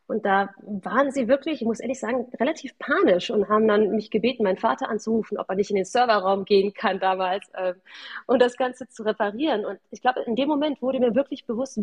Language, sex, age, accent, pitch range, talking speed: German, female, 30-49, German, 190-240 Hz, 225 wpm